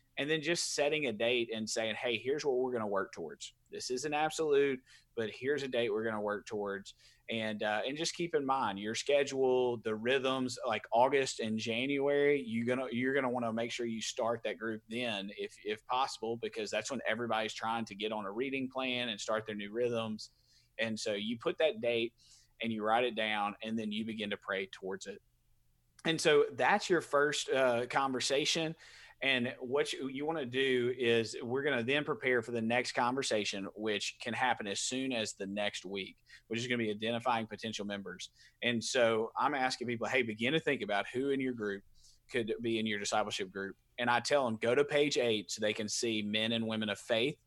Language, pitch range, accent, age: English, 110-135 Hz, American, 30-49